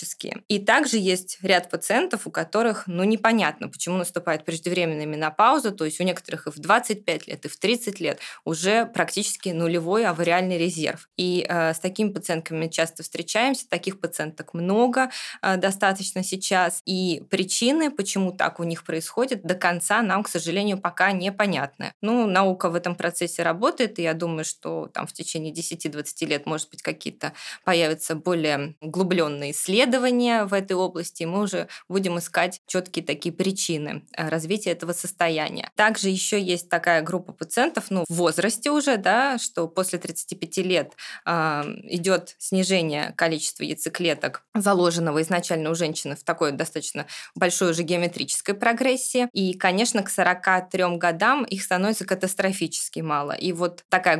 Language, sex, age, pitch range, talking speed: Russian, female, 20-39, 165-195 Hz, 150 wpm